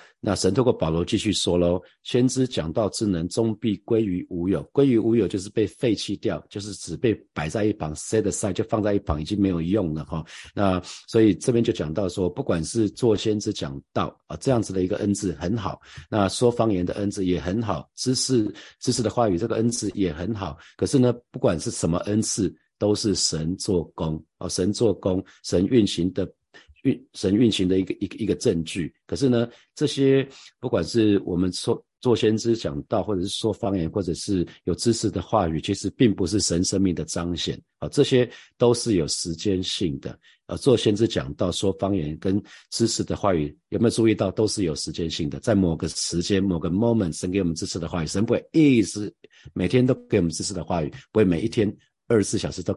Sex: male